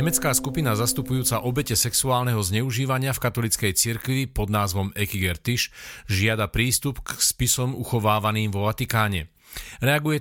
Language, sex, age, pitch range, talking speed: Slovak, male, 40-59, 105-130 Hz, 125 wpm